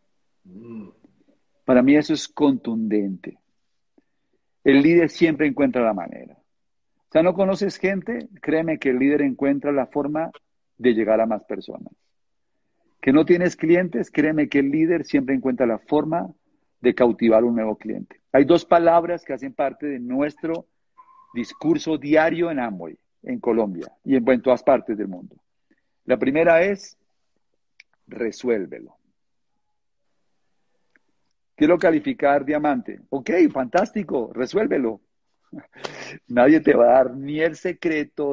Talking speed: 130 wpm